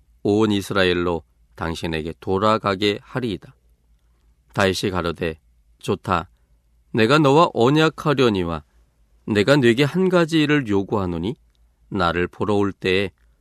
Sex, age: male, 40-59